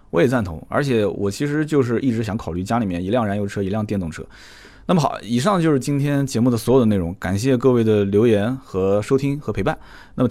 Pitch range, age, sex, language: 100-130 Hz, 20-39, male, Chinese